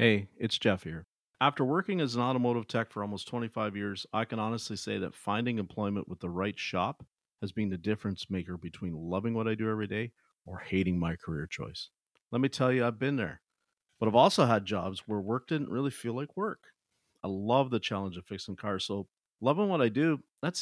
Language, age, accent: English, 50-69, American